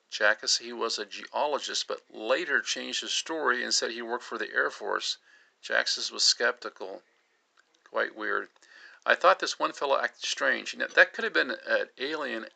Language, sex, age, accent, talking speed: English, male, 50-69, American, 180 wpm